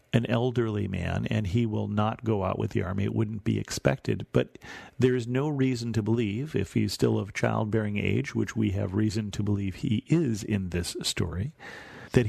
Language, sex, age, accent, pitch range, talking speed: English, male, 50-69, American, 105-130 Hz, 200 wpm